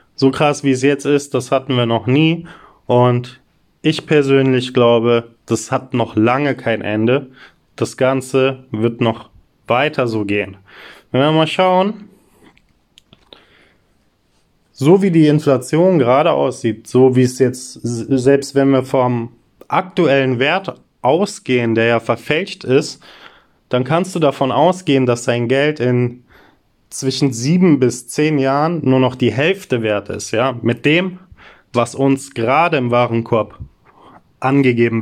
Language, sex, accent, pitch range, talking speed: German, male, German, 120-150 Hz, 140 wpm